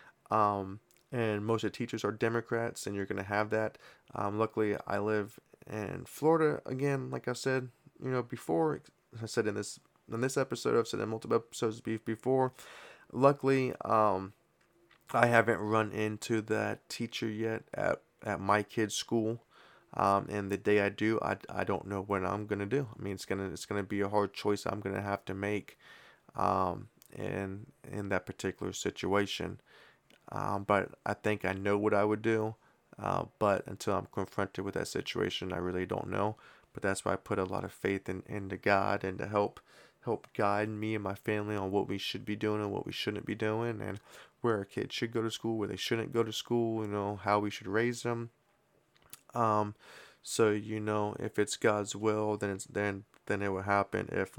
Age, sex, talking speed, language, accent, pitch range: 20-39, male, 205 wpm, English, American, 100-115 Hz